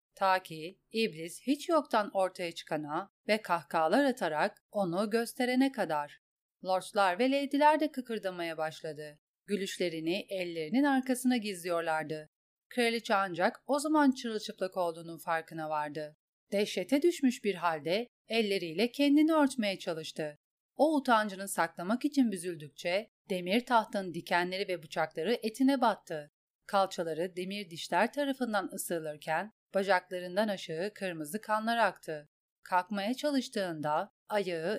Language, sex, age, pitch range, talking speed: Turkish, female, 30-49, 165-235 Hz, 110 wpm